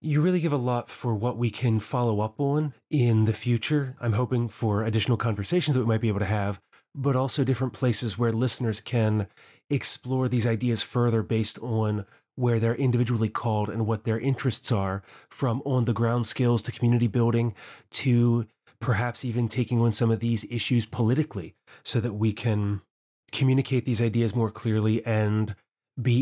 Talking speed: 175 wpm